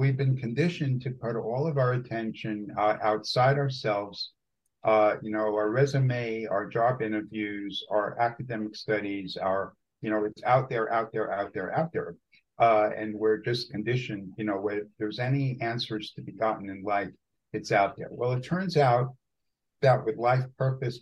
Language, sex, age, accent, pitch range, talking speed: English, male, 50-69, American, 105-130 Hz, 175 wpm